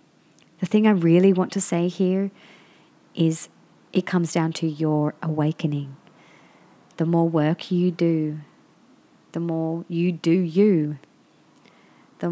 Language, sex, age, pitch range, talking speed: English, female, 30-49, 165-185 Hz, 125 wpm